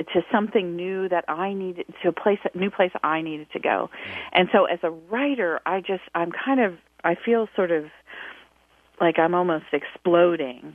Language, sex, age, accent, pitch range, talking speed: English, female, 40-59, American, 155-210 Hz, 190 wpm